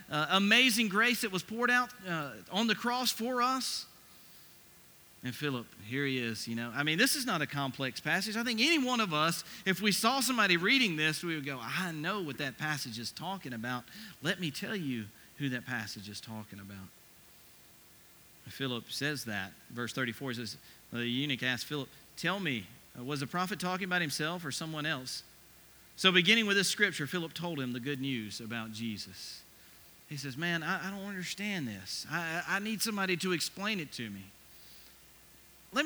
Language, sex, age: English, male, 40-59